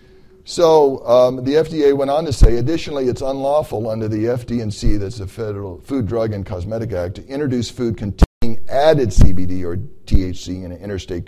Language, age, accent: English, 50-69, American